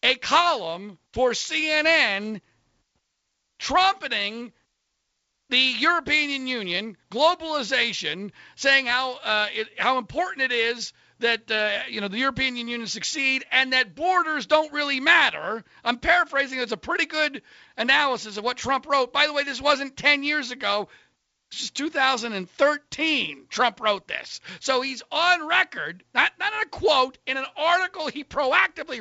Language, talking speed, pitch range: English, 145 wpm, 175-290 Hz